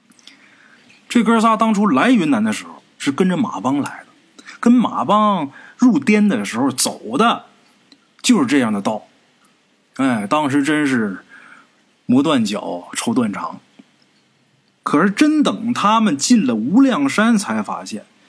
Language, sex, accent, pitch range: Chinese, male, native, 225-270 Hz